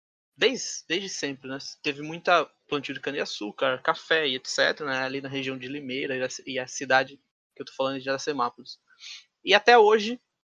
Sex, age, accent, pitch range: male, 20-39, Brazilian, 135-180 Hz